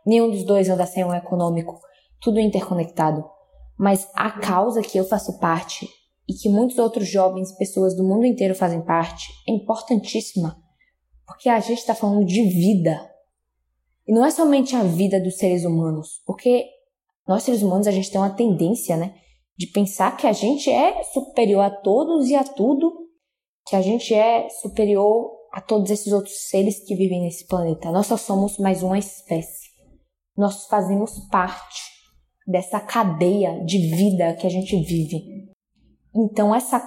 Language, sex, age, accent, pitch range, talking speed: Portuguese, female, 10-29, Brazilian, 185-230 Hz, 165 wpm